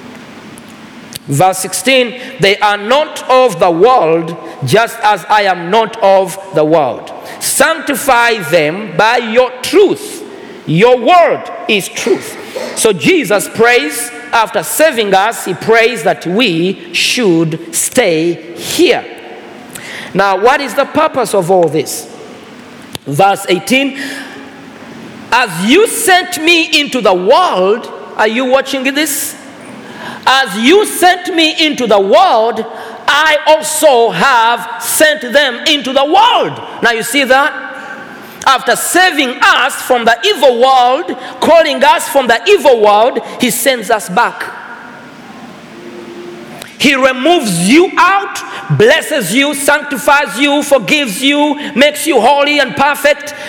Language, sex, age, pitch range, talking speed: Swedish, male, 50-69, 215-290 Hz, 125 wpm